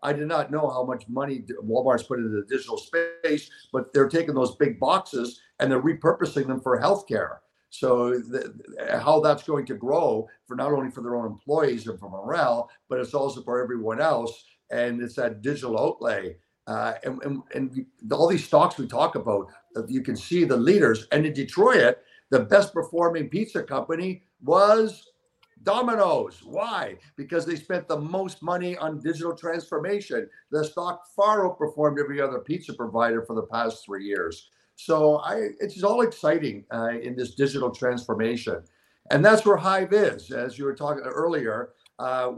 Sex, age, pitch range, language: male, 60-79, 125-170 Hz, English